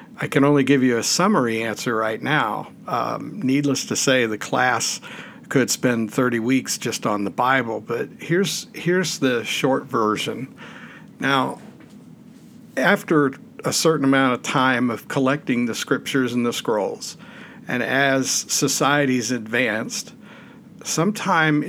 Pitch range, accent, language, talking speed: 120-145 Hz, American, English, 135 wpm